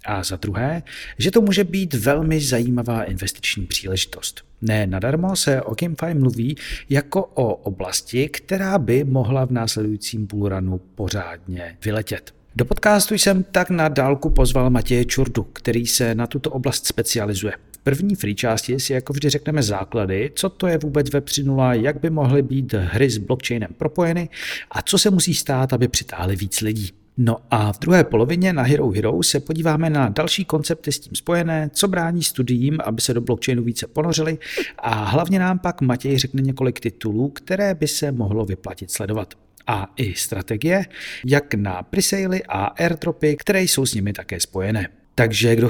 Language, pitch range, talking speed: Czech, 110-155 Hz, 170 wpm